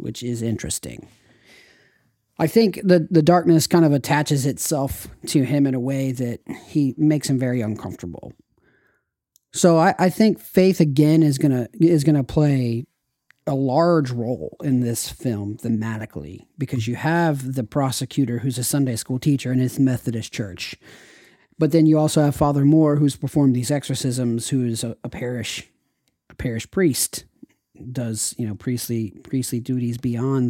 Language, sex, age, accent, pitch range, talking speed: English, male, 40-59, American, 120-155 Hz, 165 wpm